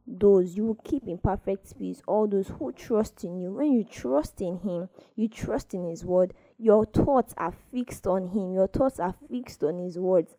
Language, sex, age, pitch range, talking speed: English, female, 10-29, 185-245 Hz, 210 wpm